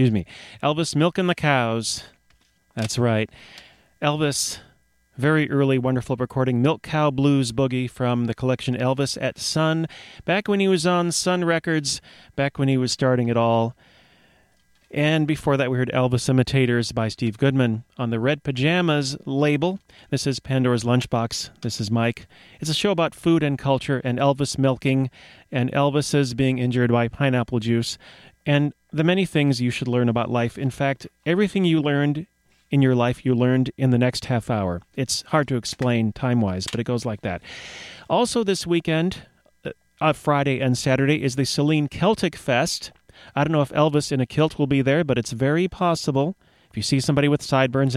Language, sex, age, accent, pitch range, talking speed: English, male, 30-49, American, 120-150 Hz, 180 wpm